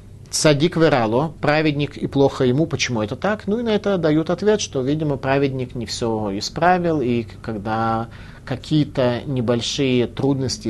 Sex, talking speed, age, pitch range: male, 145 wpm, 30-49, 100-145 Hz